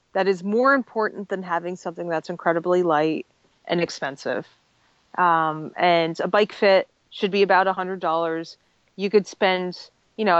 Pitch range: 180-210 Hz